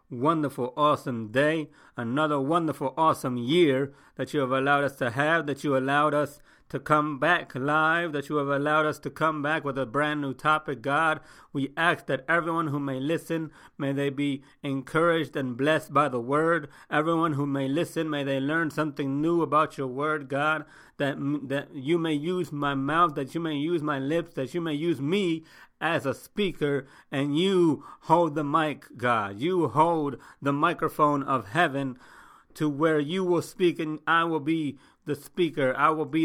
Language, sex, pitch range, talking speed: English, male, 135-160 Hz, 185 wpm